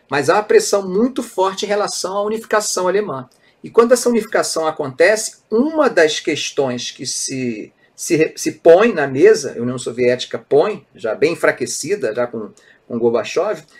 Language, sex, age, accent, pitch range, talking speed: Portuguese, male, 40-59, Brazilian, 135-215 Hz, 160 wpm